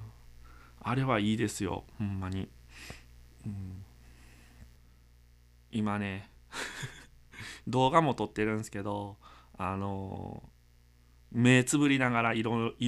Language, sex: Japanese, male